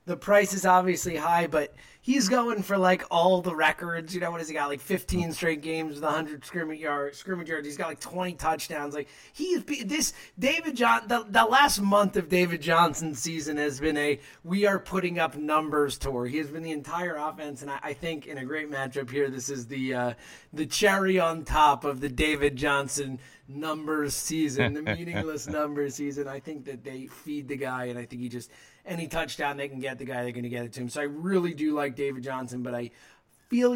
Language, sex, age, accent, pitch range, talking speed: English, male, 30-49, American, 140-180 Hz, 225 wpm